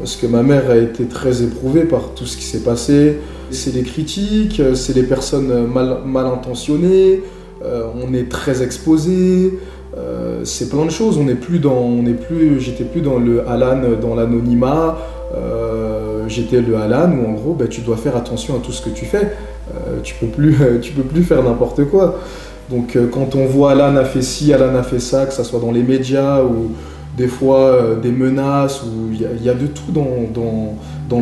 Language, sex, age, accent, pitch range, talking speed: French, male, 20-39, French, 115-140 Hz, 210 wpm